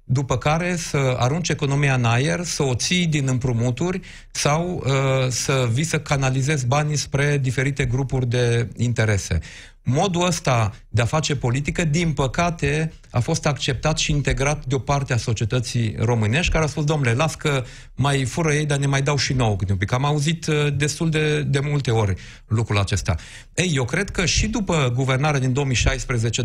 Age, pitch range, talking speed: 40-59, 125-160 Hz, 175 wpm